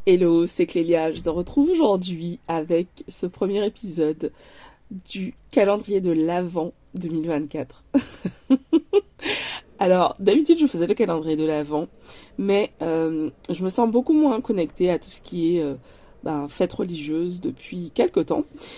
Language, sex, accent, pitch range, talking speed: French, female, French, 160-215 Hz, 140 wpm